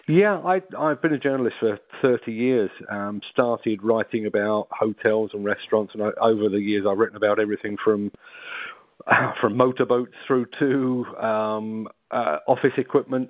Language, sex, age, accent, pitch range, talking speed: English, male, 40-59, British, 105-125 Hz, 160 wpm